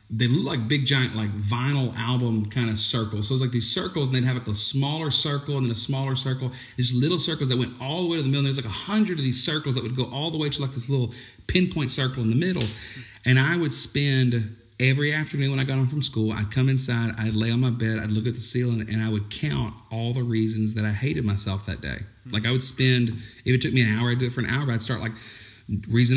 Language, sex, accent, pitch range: English, male, American, 110-130 Hz